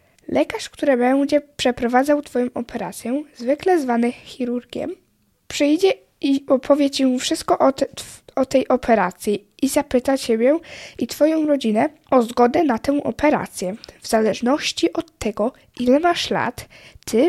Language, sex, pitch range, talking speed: Polish, female, 235-300 Hz, 130 wpm